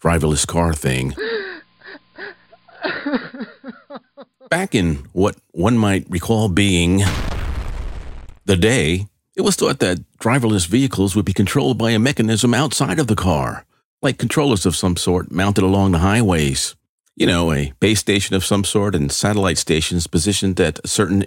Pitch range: 85-115 Hz